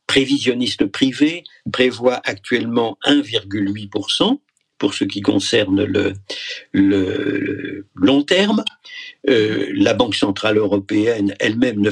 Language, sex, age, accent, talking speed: French, male, 50-69, French, 100 wpm